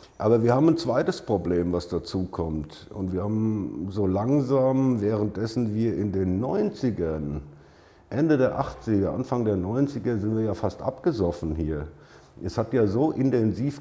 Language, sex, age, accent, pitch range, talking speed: German, male, 50-69, German, 95-120 Hz, 155 wpm